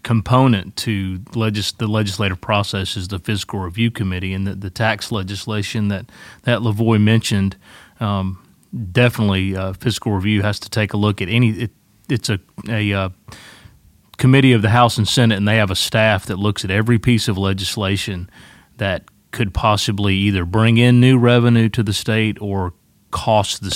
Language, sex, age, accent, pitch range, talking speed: English, male, 30-49, American, 95-115 Hz, 175 wpm